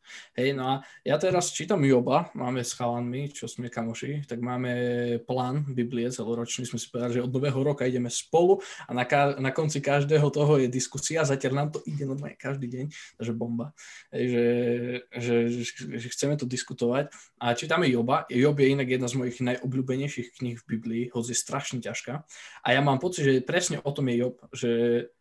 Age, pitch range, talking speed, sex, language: 20-39, 120-145 Hz, 195 wpm, male, Slovak